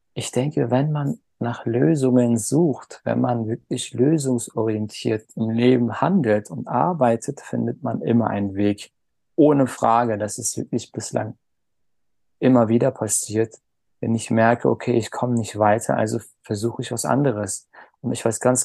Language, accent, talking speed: German, German, 150 wpm